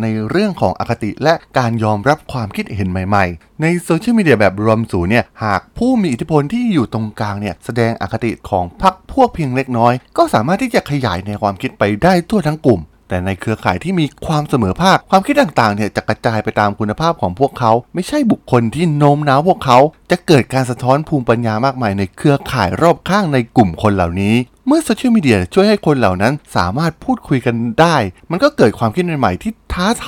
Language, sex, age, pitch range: Thai, male, 20-39, 105-170 Hz